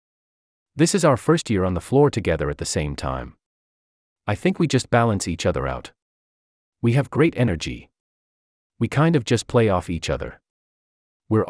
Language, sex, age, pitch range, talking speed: English, male, 30-49, 80-130 Hz, 175 wpm